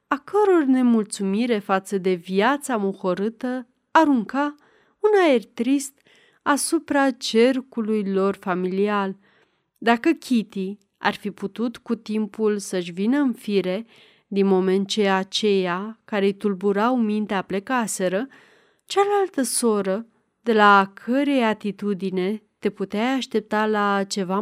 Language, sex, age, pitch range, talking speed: Romanian, female, 30-49, 195-245 Hz, 115 wpm